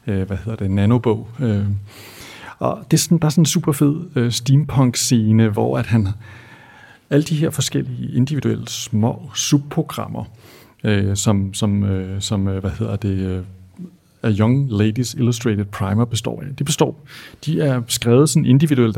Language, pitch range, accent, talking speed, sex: Danish, 110-135 Hz, native, 135 wpm, male